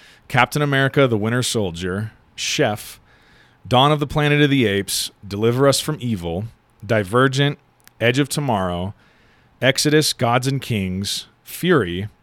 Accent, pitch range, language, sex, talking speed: American, 105-135 Hz, English, male, 130 wpm